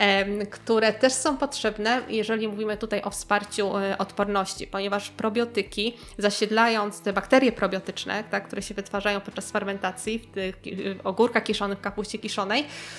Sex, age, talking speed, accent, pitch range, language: female, 20-39, 135 wpm, native, 200-230 Hz, Polish